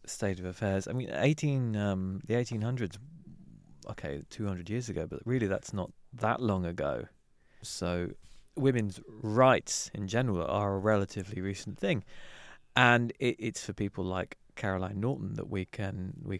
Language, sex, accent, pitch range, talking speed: English, male, British, 95-115 Hz, 150 wpm